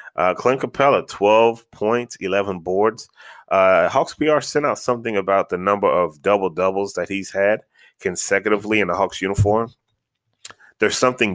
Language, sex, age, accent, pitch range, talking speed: English, male, 20-39, American, 90-115 Hz, 155 wpm